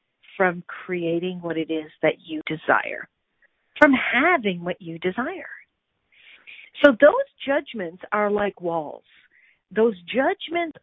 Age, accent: 50-69, American